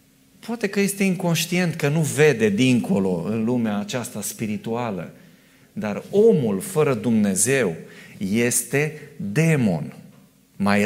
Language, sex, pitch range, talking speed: Romanian, male, 135-200 Hz, 105 wpm